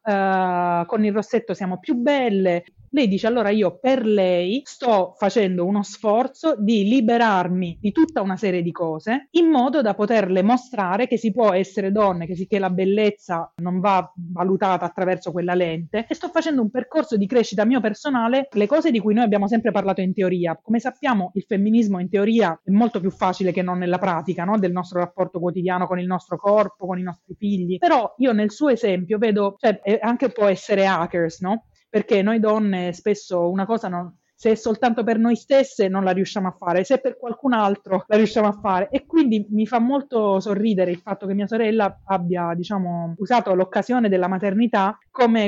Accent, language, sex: native, Italian, female